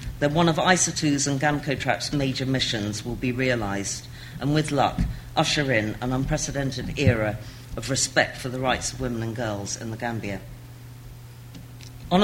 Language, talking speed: English, 155 wpm